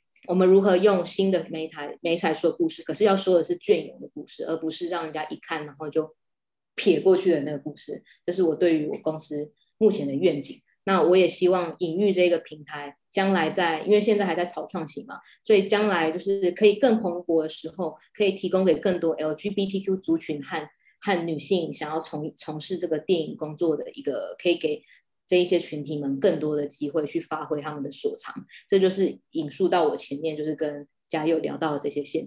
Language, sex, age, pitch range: Chinese, female, 20-39, 155-185 Hz